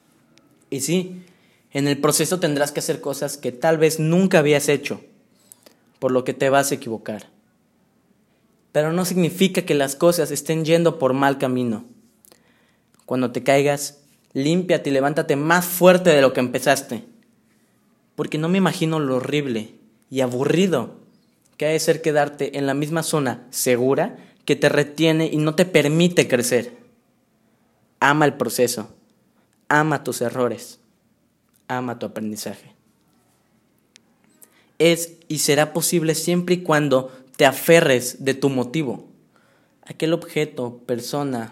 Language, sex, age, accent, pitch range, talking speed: Spanish, male, 20-39, Mexican, 130-165 Hz, 135 wpm